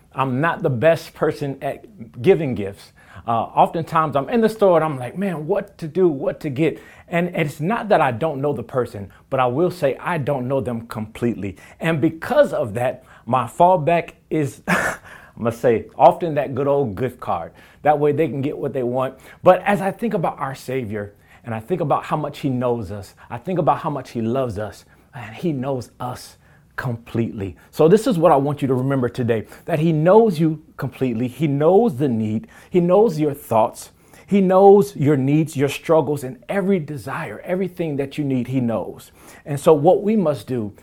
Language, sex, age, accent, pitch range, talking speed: English, male, 30-49, American, 120-165 Hz, 205 wpm